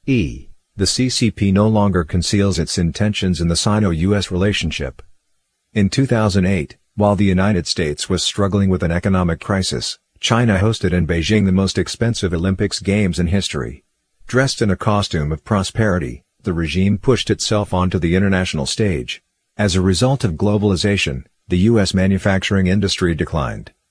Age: 50-69